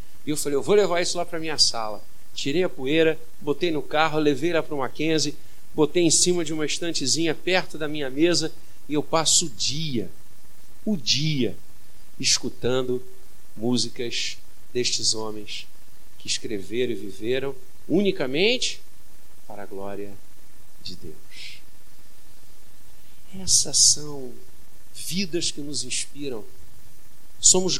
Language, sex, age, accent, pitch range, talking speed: Portuguese, male, 50-69, Brazilian, 110-160 Hz, 130 wpm